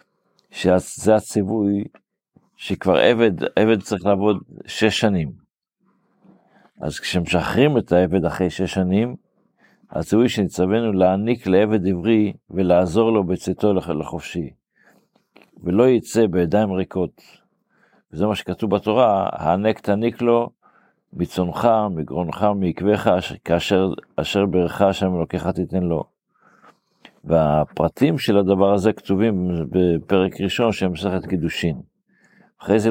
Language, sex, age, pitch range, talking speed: Hebrew, male, 50-69, 90-110 Hz, 105 wpm